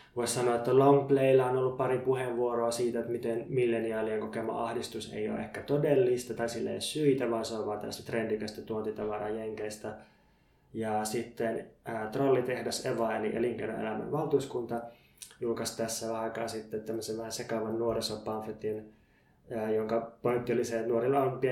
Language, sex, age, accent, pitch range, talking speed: Finnish, male, 20-39, native, 110-135 Hz, 145 wpm